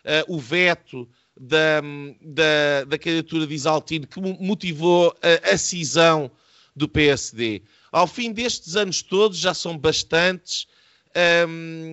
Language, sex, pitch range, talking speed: Portuguese, male, 150-185 Hz, 130 wpm